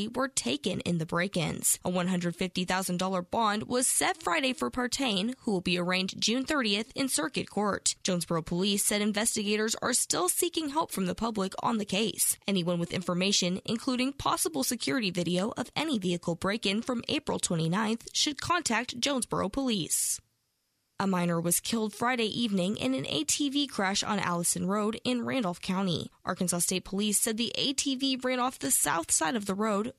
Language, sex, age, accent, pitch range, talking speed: English, female, 10-29, American, 180-250 Hz, 170 wpm